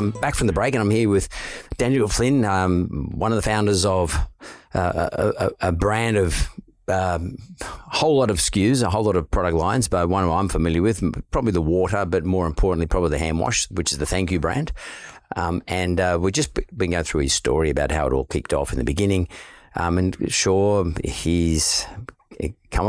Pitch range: 80-100 Hz